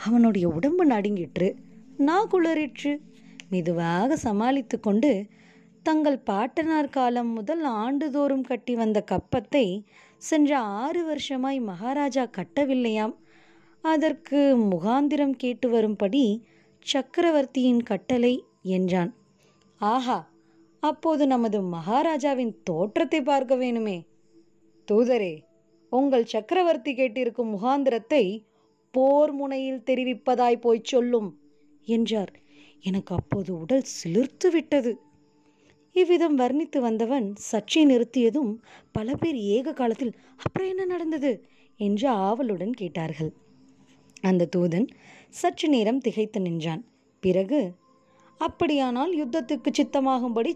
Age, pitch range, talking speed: 20-39, 205-285 Hz, 85 wpm